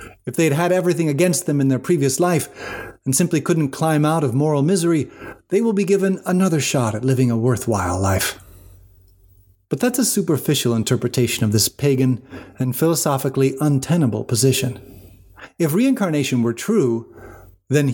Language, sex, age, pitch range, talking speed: English, male, 30-49, 120-160 Hz, 155 wpm